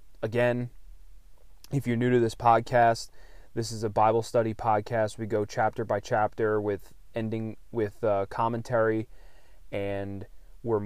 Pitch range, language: 105-120 Hz, English